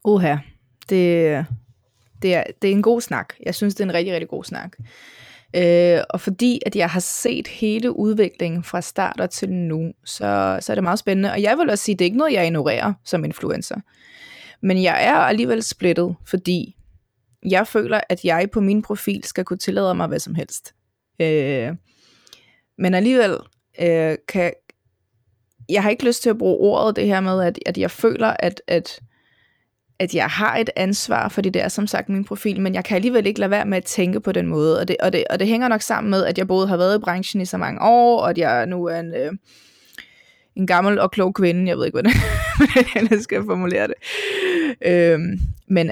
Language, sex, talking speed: Danish, female, 215 wpm